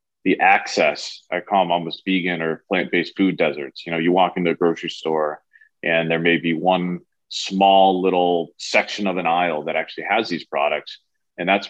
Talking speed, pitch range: 195 wpm, 80-95 Hz